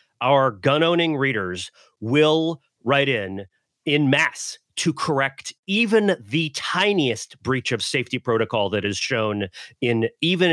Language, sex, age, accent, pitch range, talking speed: English, male, 30-49, American, 120-175 Hz, 130 wpm